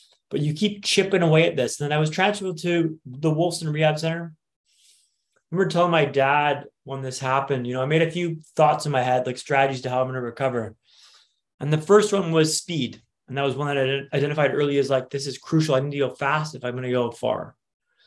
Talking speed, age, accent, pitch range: 240 wpm, 20-39, American, 125-155 Hz